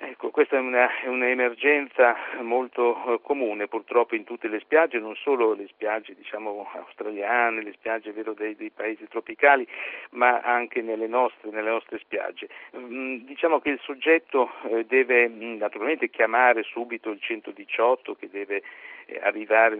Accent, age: native, 50-69